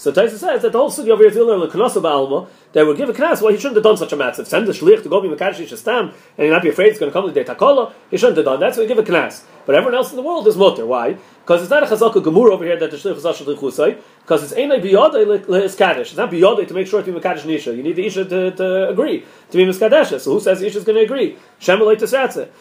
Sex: male